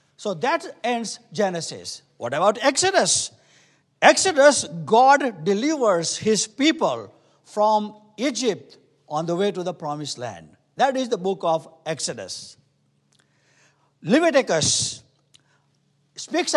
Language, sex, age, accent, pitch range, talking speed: English, male, 60-79, Indian, 180-285 Hz, 105 wpm